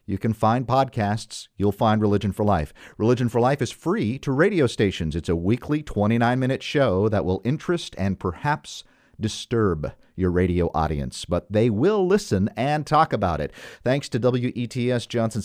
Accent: American